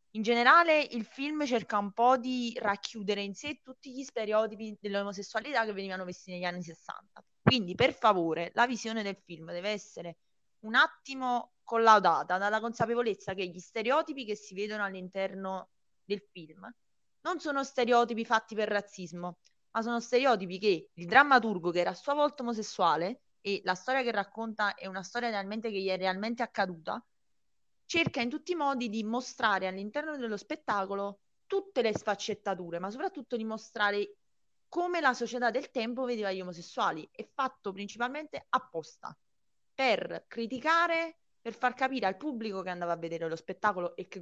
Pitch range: 190-255 Hz